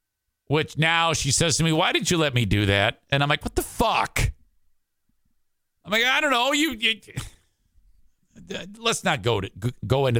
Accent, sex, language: American, male, English